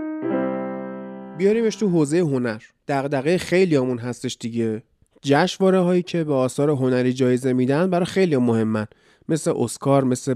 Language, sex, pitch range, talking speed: Persian, male, 120-175 Hz, 140 wpm